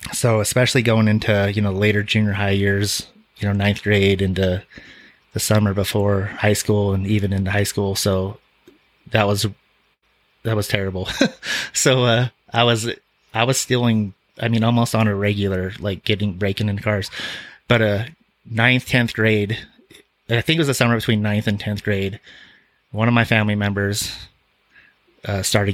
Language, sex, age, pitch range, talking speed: English, male, 30-49, 100-110 Hz, 170 wpm